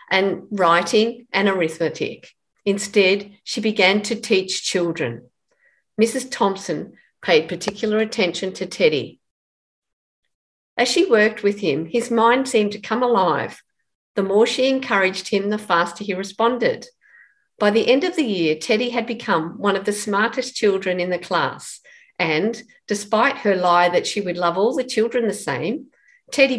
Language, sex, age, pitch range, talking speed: English, female, 50-69, 195-255 Hz, 155 wpm